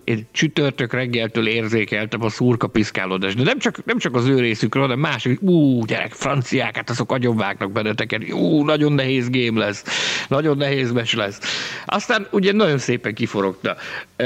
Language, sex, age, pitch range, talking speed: Hungarian, male, 50-69, 110-150 Hz, 150 wpm